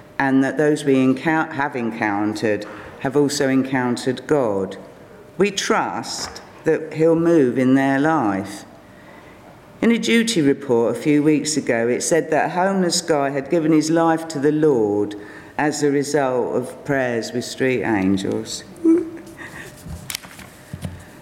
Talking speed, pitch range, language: 140 wpm, 135-205 Hz, English